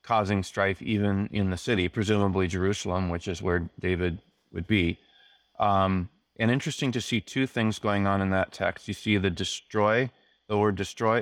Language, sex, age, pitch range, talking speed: English, male, 20-39, 95-105 Hz, 175 wpm